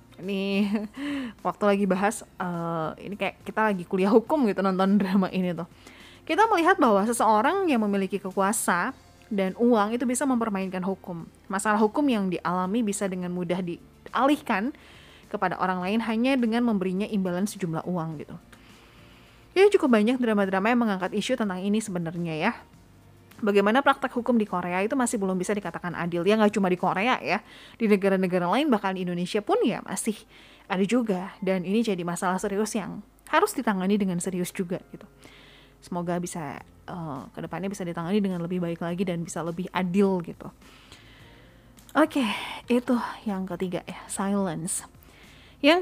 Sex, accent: female, native